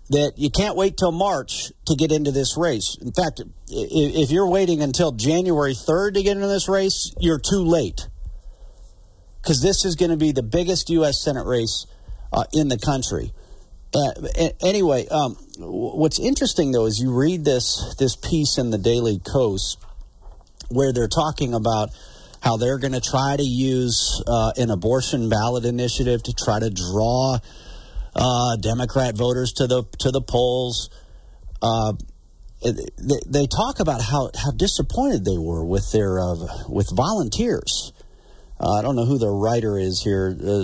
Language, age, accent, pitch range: English, 40-59, American, 105-155 Hz